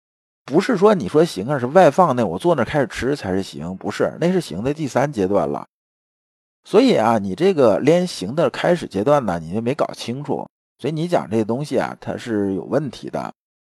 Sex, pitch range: male, 110-175 Hz